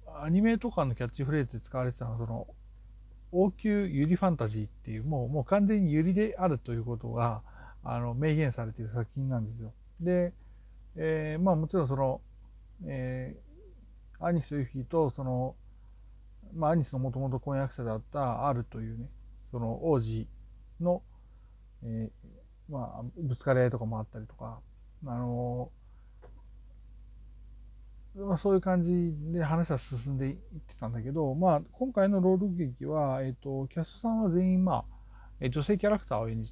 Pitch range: 110-155 Hz